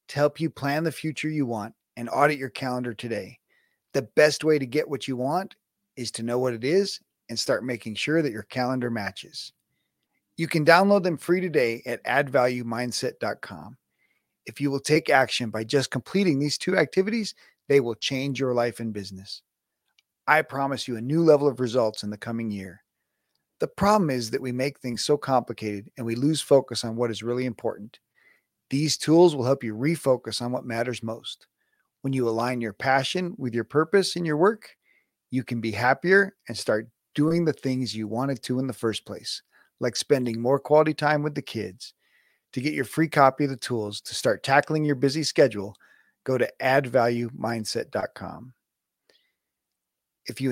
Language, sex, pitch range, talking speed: English, male, 115-150 Hz, 185 wpm